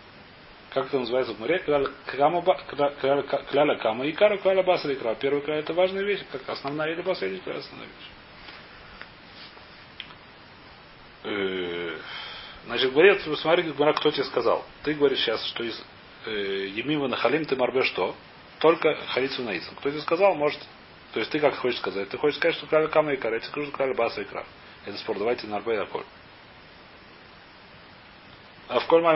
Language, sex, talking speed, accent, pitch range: Russian, male, 145 wpm, native, 140-180 Hz